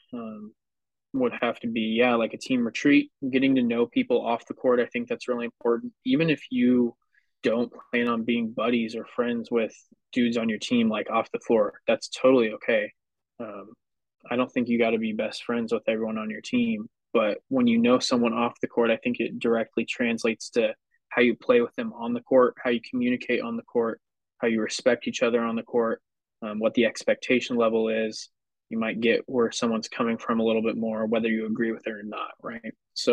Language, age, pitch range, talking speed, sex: English, 20-39, 115-140 Hz, 220 wpm, male